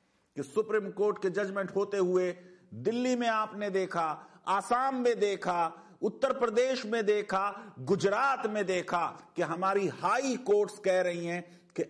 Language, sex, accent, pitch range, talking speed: Hindi, male, native, 180-225 Hz, 145 wpm